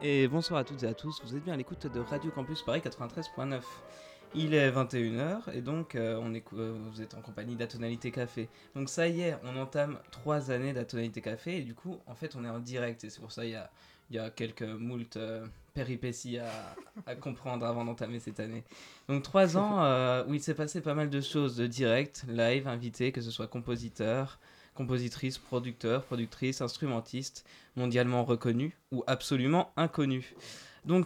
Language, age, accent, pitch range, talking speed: French, 20-39, French, 115-145 Hz, 195 wpm